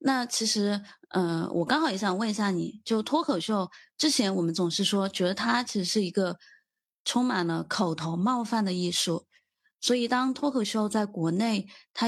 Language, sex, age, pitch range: Chinese, female, 20-39, 185-245 Hz